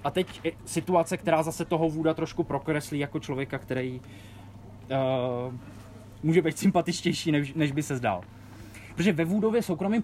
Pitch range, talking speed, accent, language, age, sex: 125-190 Hz, 150 wpm, native, Czech, 20-39, male